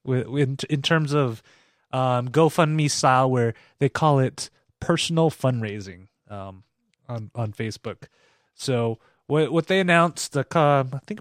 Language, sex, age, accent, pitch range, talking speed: English, male, 20-39, American, 115-150 Hz, 135 wpm